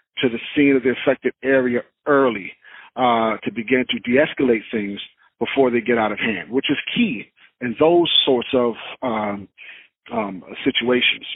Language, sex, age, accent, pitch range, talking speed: English, male, 40-59, American, 120-145 Hz, 160 wpm